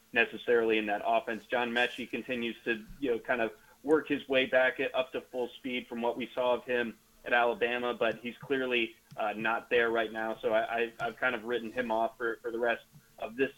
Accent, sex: American, male